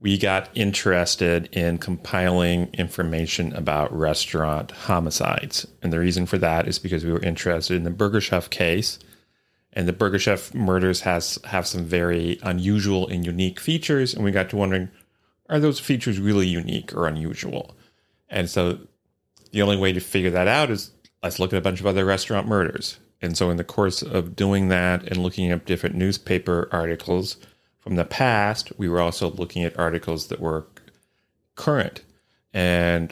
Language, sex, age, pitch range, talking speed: English, male, 30-49, 85-95 Hz, 170 wpm